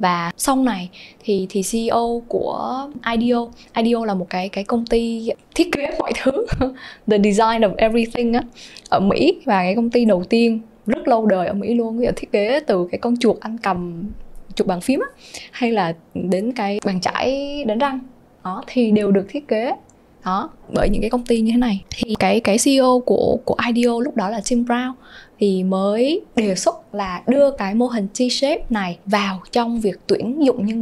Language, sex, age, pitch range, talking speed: Vietnamese, female, 10-29, 205-260 Hz, 200 wpm